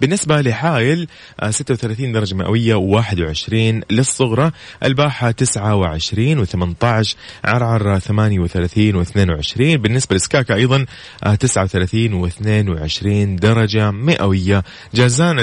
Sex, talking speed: male, 80 wpm